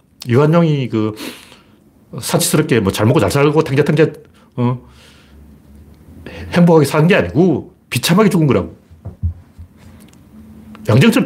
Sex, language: male, Korean